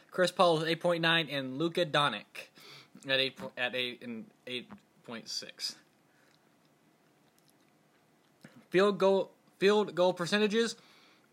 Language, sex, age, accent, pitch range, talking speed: English, male, 20-39, American, 155-195 Hz, 95 wpm